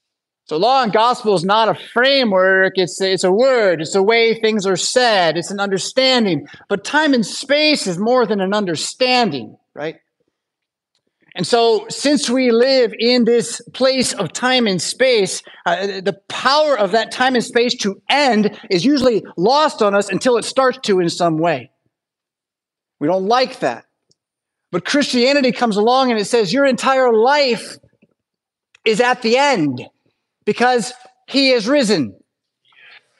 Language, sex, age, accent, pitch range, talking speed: English, male, 30-49, American, 200-255 Hz, 155 wpm